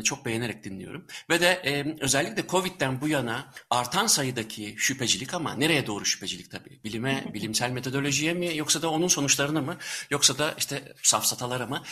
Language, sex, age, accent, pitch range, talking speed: Turkish, male, 60-79, native, 115-155 Hz, 160 wpm